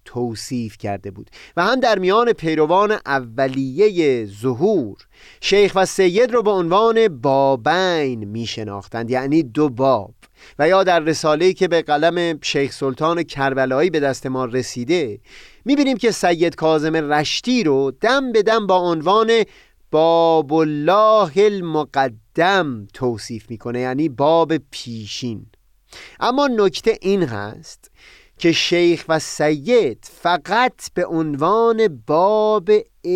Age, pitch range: 30-49, 125-195 Hz